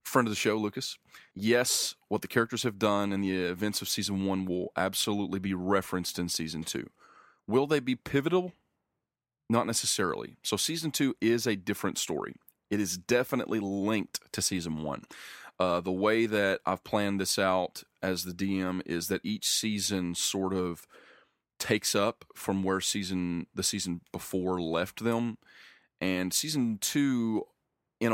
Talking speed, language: 160 wpm, English